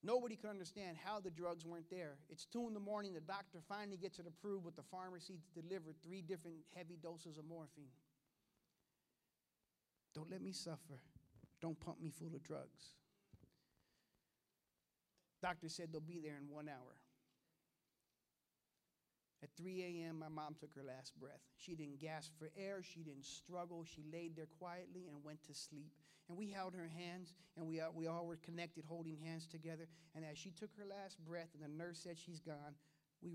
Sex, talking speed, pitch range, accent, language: male, 185 wpm, 155-185 Hz, American, English